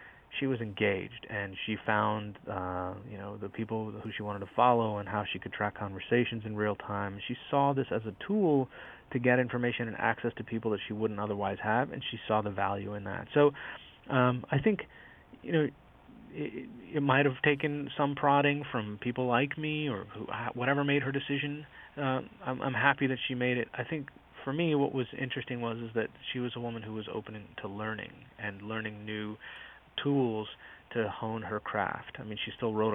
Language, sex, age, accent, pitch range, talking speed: English, male, 30-49, American, 110-140 Hz, 205 wpm